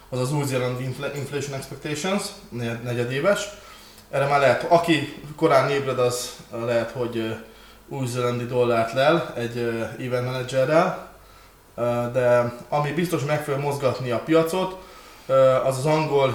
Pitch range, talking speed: 115-145 Hz, 115 wpm